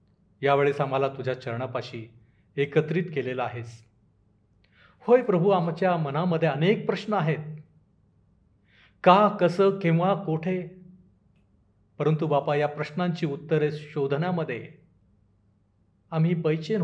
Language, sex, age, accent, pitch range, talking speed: Marathi, male, 40-59, native, 110-165 Hz, 95 wpm